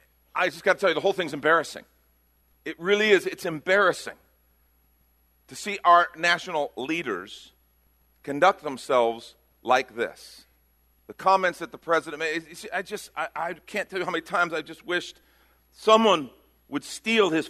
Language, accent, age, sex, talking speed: English, American, 50-69, male, 150 wpm